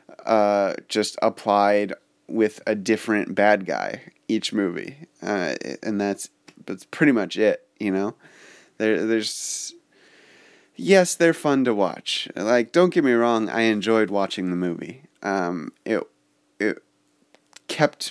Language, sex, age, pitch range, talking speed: English, male, 20-39, 100-130 Hz, 135 wpm